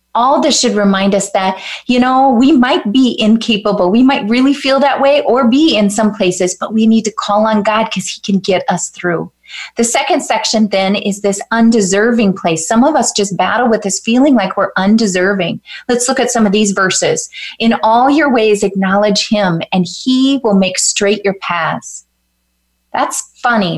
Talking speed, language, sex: 195 wpm, English, female